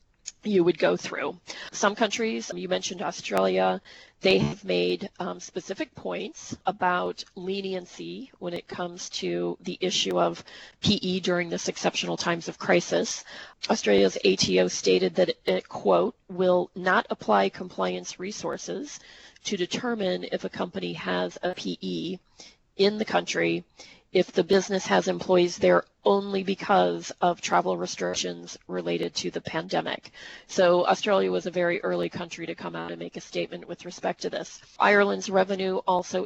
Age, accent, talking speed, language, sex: 40-59, American, 145 wpm, English, female